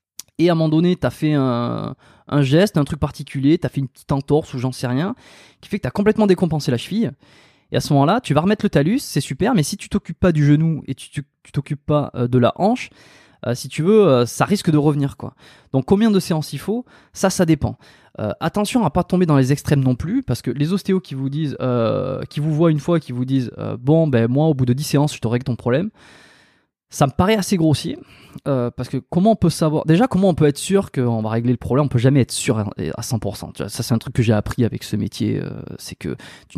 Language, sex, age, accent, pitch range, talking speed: French, male, 20-39, French, 125-165 Hz, 275 wpm